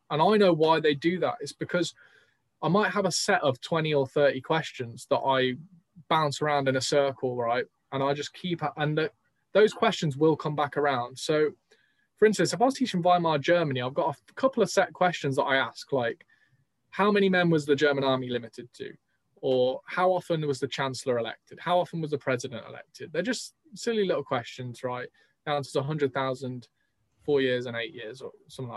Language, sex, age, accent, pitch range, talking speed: English, male, 20-39, British, 135-180 Hz, 200 wpm